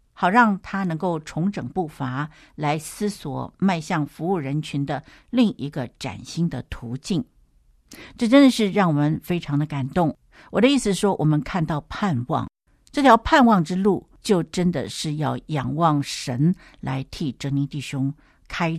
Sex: female